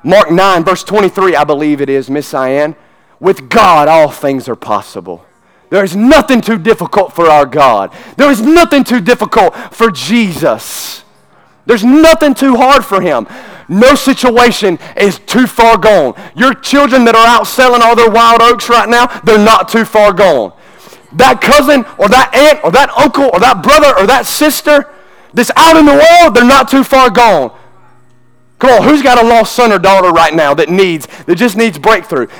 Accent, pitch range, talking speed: American, 220-280 Hz, 185 wpm